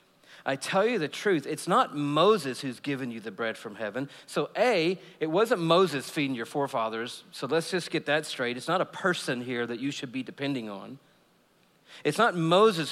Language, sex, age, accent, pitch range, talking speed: English, male, 50-69, American, 175-220 Hz, 200 wpm